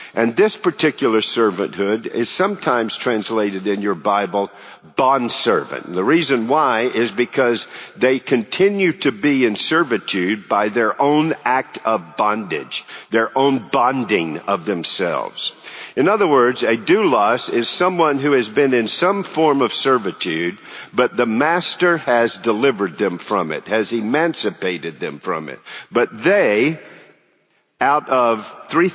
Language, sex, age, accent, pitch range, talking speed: English, male, 50-69, American, 105-155 Hz, 135 wpm